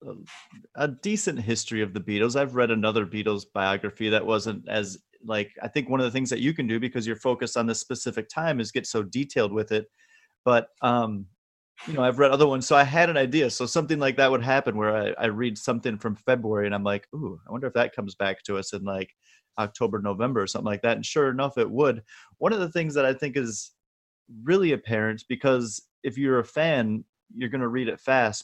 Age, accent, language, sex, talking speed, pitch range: 30-49, American, English, male, 230 wpm, 110-135 Hz